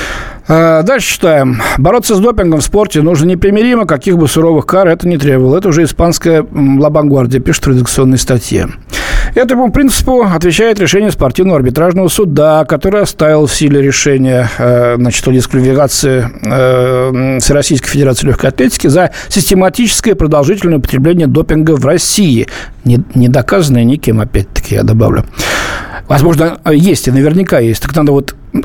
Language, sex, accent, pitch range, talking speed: Russian, male, native, 130-165 Hz, 140 wpm